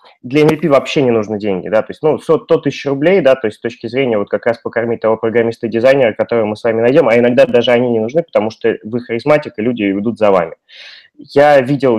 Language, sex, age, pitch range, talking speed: Russian, male, 20-39, 110-135 Hz, 235 wpm